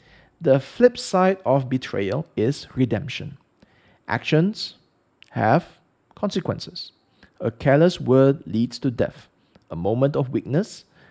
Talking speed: 110 wpm